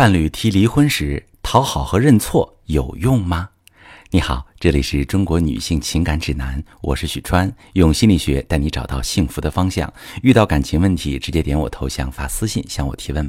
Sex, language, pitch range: male, Chinese, 80-110 Hz